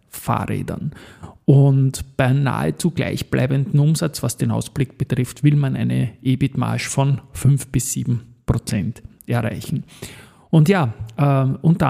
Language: German